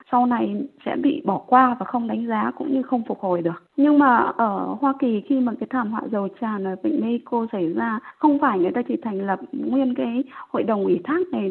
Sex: female